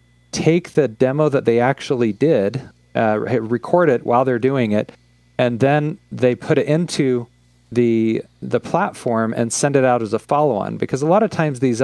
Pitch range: 110-130 Hz